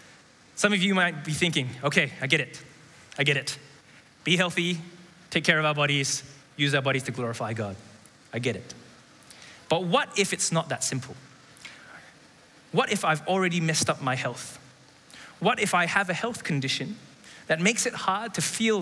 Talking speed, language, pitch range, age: 180 wpm, English, 140-185 Hz, 20-39